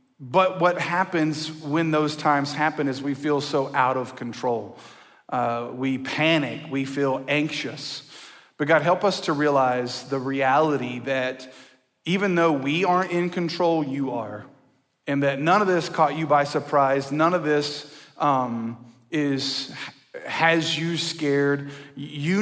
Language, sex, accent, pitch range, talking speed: English, male, American, 135-160 Hz, 145 wpm